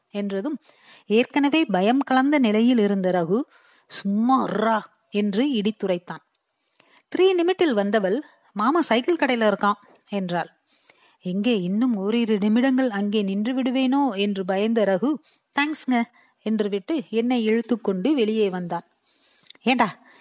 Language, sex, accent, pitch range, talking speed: Tamil, female, native, 205-265 Hz, 105 wpm